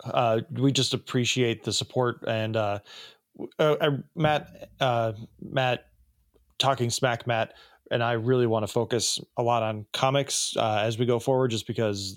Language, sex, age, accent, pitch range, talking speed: English, male, 20-39, American, 110-135 Hz, 160 wpm